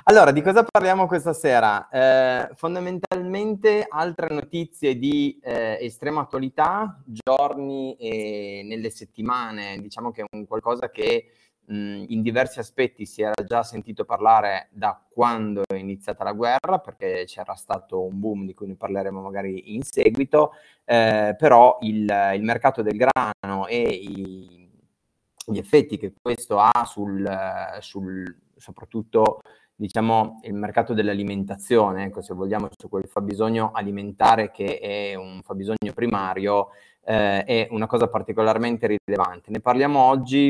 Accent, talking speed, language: native, 140 wpm, Italian